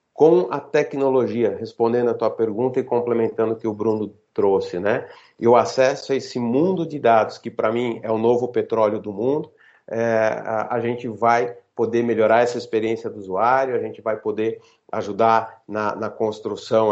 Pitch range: 110-150 Hz